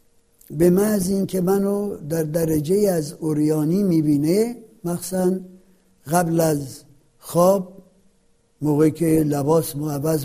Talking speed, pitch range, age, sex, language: 105 wpm, 155-210 Hz, 60-79, male, Persian